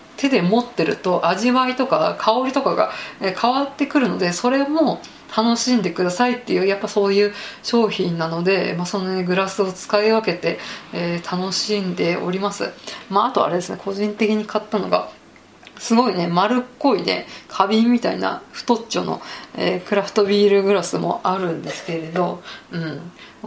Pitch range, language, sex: 180-225 Hz, Japanese, female